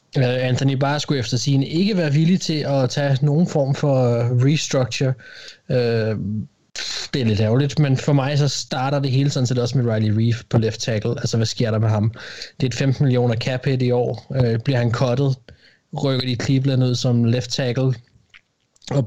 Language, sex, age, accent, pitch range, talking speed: Danish, male, 20-39, native, 115-140 Hz, 195 wpm